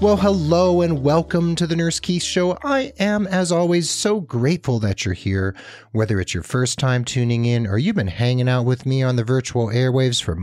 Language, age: English, 40-59